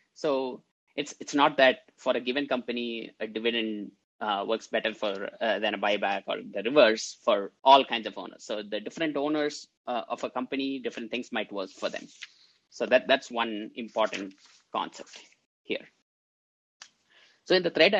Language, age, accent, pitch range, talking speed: English, 20-39, Indian, 110-145 Hz, 175 wpm